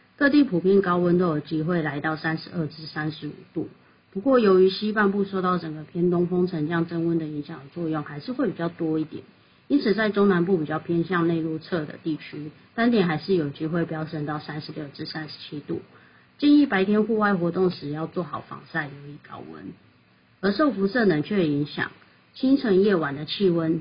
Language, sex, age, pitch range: Chinese, female, 30-49, 155-190 Hz